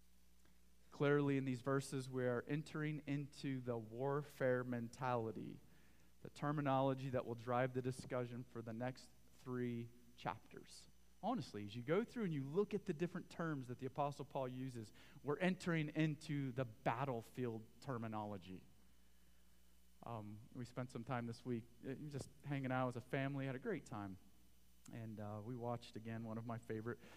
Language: English